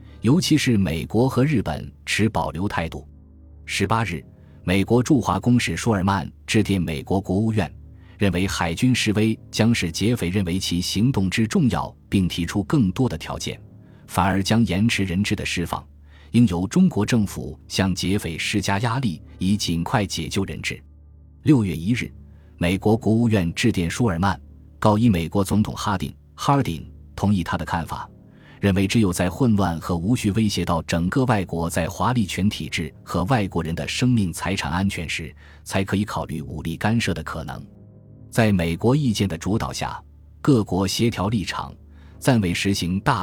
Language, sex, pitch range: Chinese, male, 80-110 Hz